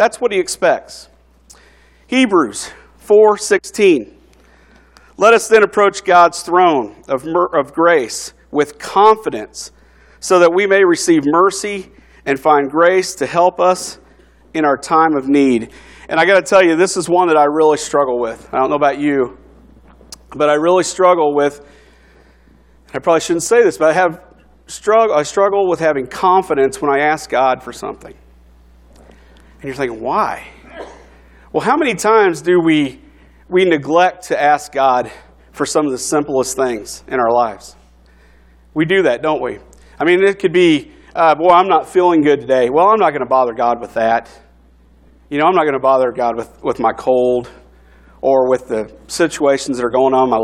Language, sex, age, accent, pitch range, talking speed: English, male, 50-69, American, 120-185 Hz, 180 wpm